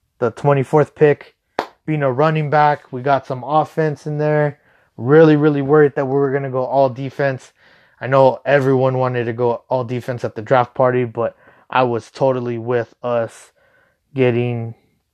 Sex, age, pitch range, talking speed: male, 20-39, 120-140 Hz, 170 wpm